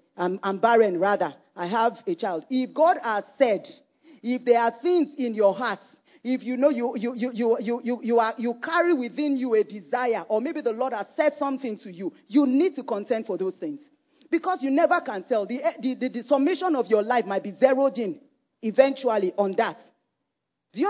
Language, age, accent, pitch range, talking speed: English, 40-59, Nigerian, 225-295 Hz, 210 wpm